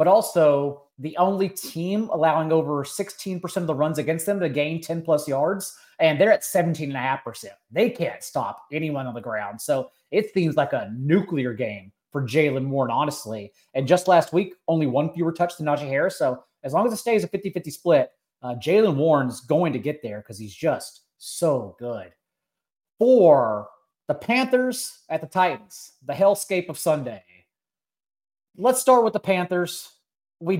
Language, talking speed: English, 170 wpm